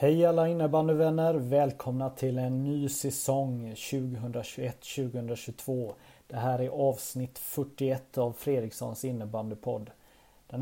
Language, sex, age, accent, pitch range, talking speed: Swedish, male, 30-49, native, 120-140 Hz, 100 wpm